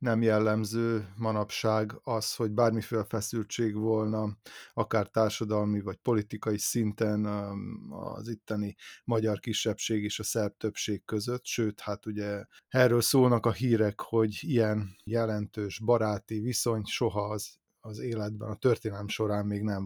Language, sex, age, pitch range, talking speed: Hungarian, male, 30-49, 105-115 Hz, 130 wpm